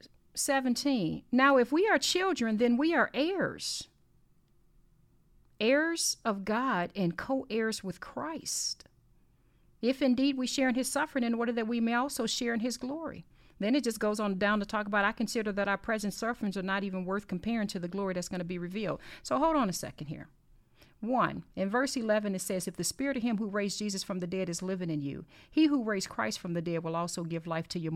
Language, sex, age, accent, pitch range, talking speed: English, female, 40-59, American, 170-230 Hz, 220 wpm